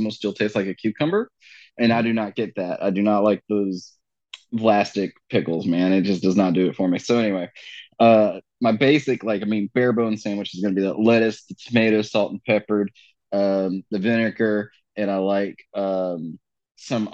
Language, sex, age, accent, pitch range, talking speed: English, male, 30-49, American, 100-115 Hz, 205 wpm